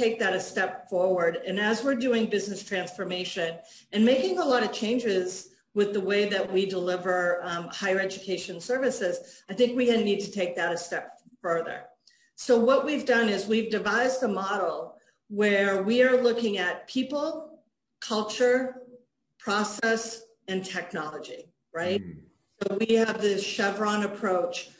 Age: 40-59